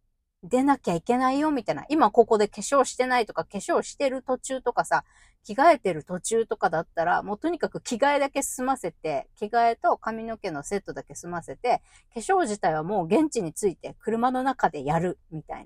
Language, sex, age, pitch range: Japanese, female, 40-59, 170-270 Hz